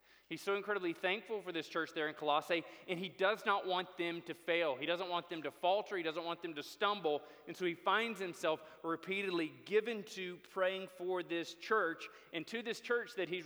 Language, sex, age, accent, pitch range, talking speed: English, male, 30-49, American, 175-220 Hz, 215 wpm